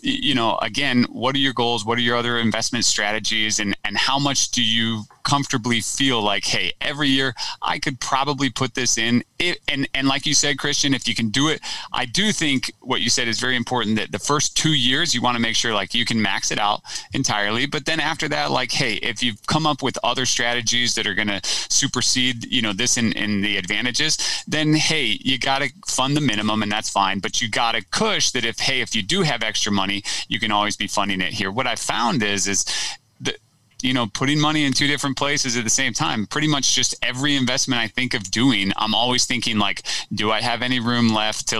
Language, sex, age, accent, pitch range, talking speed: English, male, 30-49, American, 110-135 Hz, 230 wpm